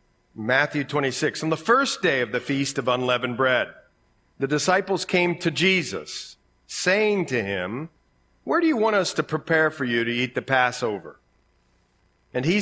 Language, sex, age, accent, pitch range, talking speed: English, male, 50-69, American, 130-165 Hz, 165 wpm